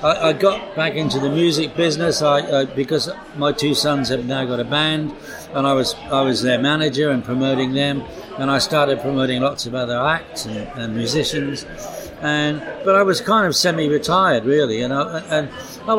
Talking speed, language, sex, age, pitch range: 190 wpm, English, male, 60-79, 135-160 Hz